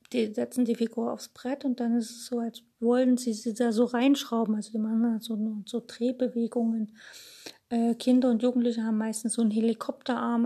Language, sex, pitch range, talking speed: German, female, 220-240 Hz, 195 wpm